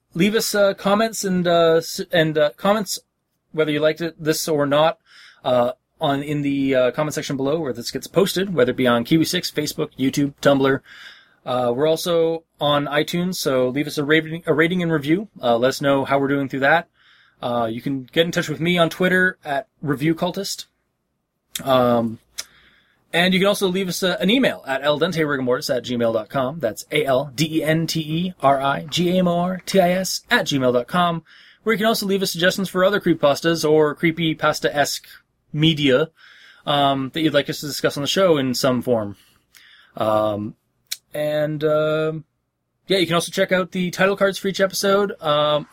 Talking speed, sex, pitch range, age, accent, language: 175 wpm, male, 140-175 Hz, 20-39, American, English